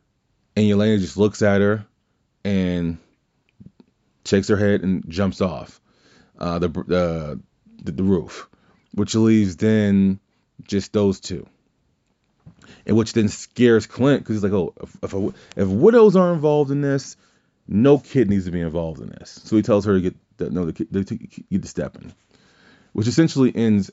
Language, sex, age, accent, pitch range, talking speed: English, male, 30-49, American, 90-110 Hz, 170 wpm